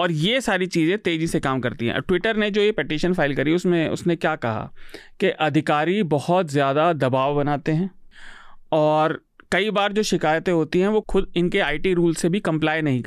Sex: male